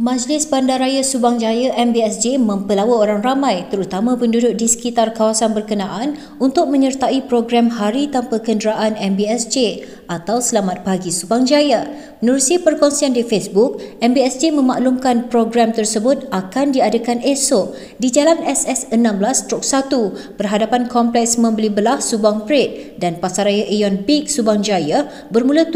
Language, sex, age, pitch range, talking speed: Malay, female, 20-39, 210-270 Hz, 125 wpm